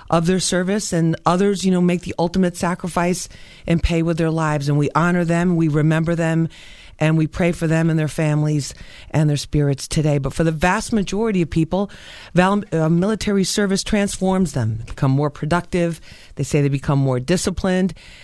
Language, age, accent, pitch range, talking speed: English, 40-59, American, 145-175 Hz, 180 wpm